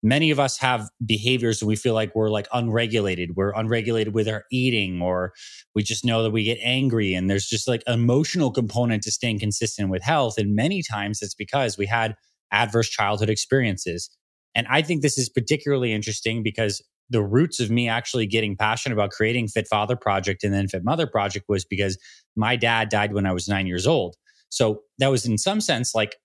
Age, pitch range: 20-39, 105-125 Hz